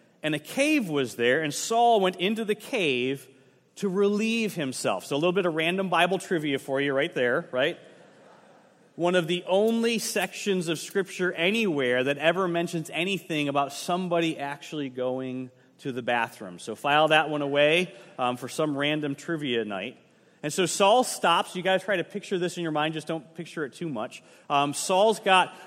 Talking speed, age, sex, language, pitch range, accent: 185 wpm, 30-49, male, English, 150-190 Hz, American